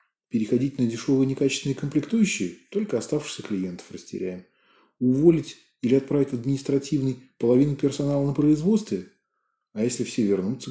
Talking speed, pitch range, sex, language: 125 wpm, 110-165 Hz, male, Russian